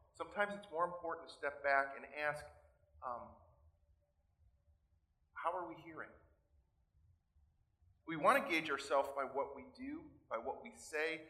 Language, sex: English, male